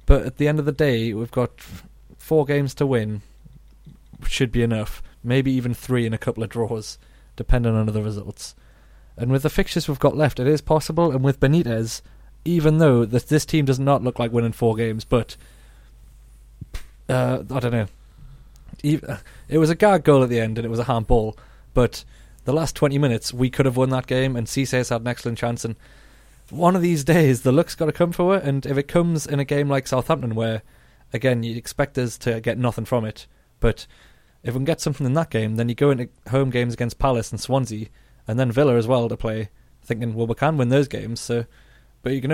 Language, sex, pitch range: English, male, 115-140 Hz